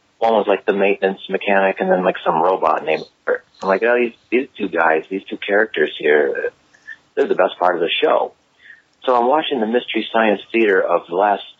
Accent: American